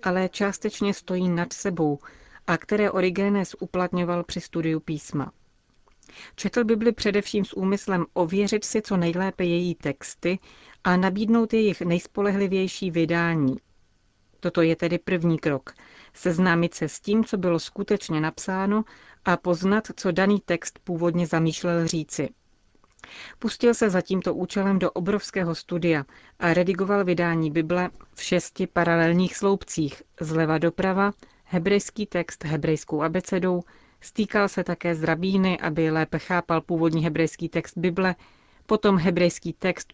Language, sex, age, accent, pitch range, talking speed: Czech, female, 40-59, native, 165-195 Hz, 130 wpm